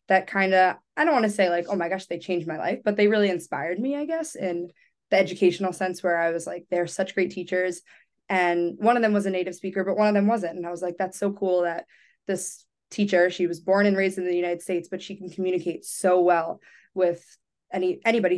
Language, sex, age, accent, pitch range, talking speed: English, female, 20-39, American, 175-195 Hz, 250 wpm